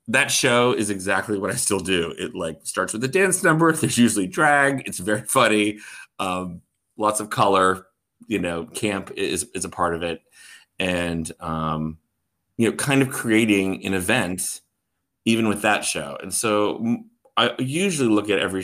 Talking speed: 175 wpm